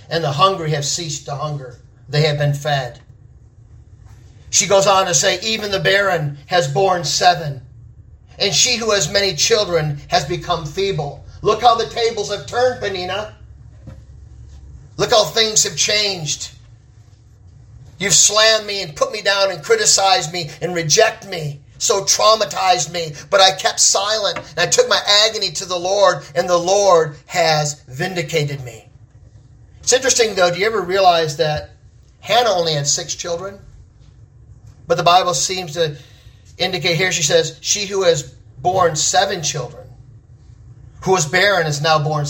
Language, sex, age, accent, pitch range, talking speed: English, male, 40-59, American, 130-190 Hz, 155 wpm